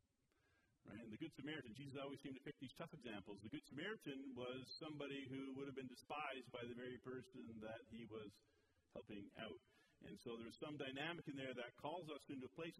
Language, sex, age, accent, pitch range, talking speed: English, male, 40-59, American, 130-165 Hz, 210 wpm